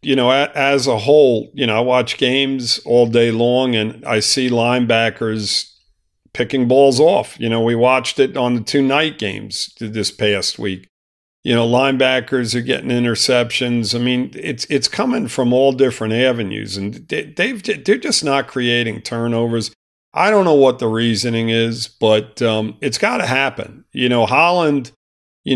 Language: English